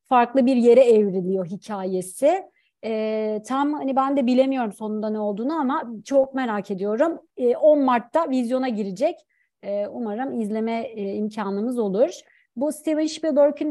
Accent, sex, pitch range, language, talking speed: native, female, 215-275 Hz, Turkish, 140 wpm